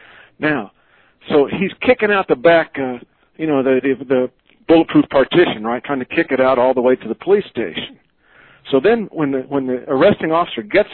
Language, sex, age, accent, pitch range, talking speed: English, male, 60-79, American, 120-165 Hz, 190 wpm